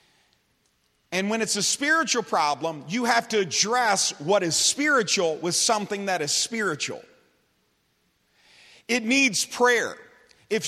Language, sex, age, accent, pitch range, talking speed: English, male, 40-59, American, 150-235 Hz, 125 wpm